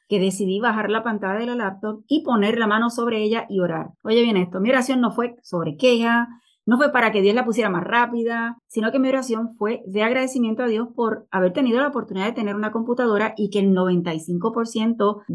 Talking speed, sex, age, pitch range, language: 220 wpm, female, 30-49, 195-240 Hz, Spanish